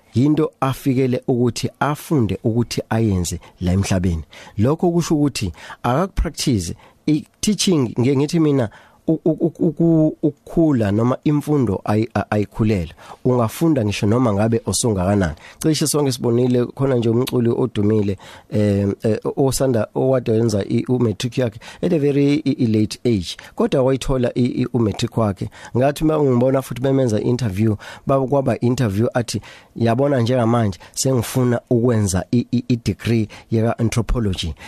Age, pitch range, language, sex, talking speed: 40-59, 105-125 Hz, English, male, 120 wpm